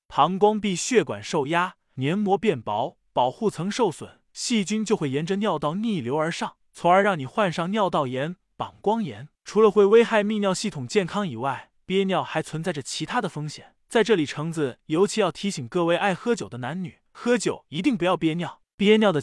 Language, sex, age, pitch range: Chinese, male, 20-39, 155-210 Hz